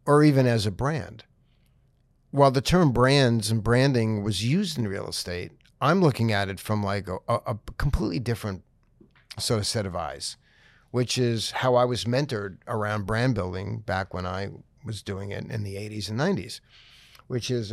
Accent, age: American, 50-69